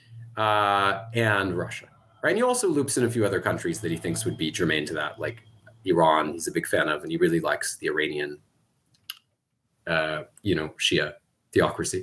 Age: 30-49